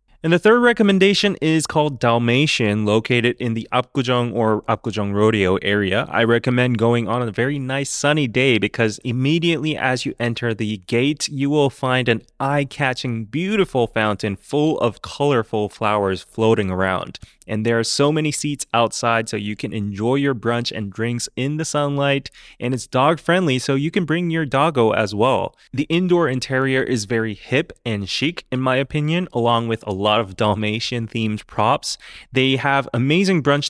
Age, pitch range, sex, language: 20-39, 115-150 Hz, male, English